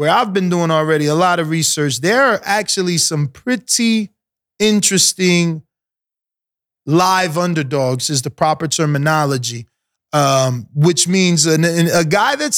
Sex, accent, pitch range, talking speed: male, American, 155-200 Hz, 130 wpm